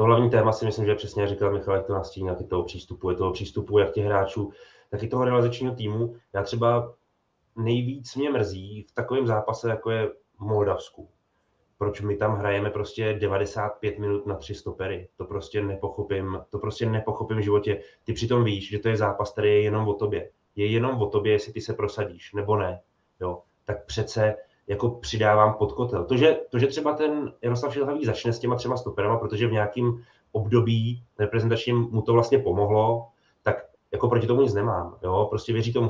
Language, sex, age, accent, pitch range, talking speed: Czech, male, 20-39, native, 100-115 Hz, 195 wpm